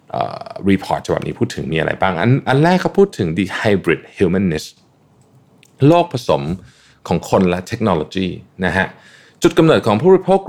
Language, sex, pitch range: Thai, male, 95-135 Hz